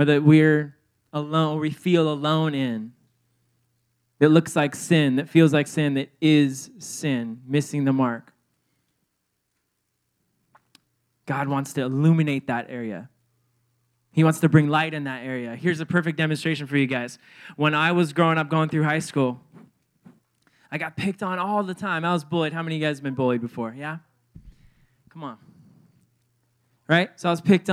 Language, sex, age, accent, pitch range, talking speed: English, male, 20-39, American, 135-180 Hz, 175 wpm